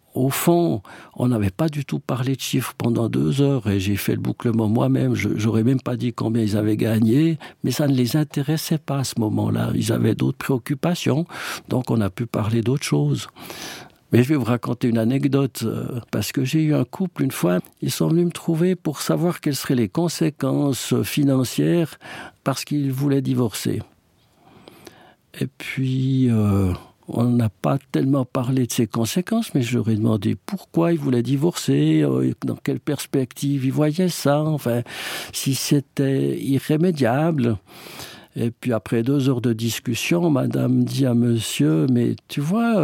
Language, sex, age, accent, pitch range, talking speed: French, male, 60-79, French, 115-150 Hz, 170 wpm